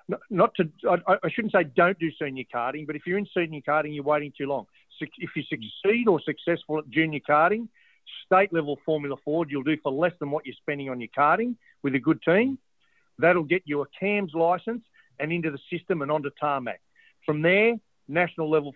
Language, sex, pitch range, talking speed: English, male, 145-185 Hz, 195 wpm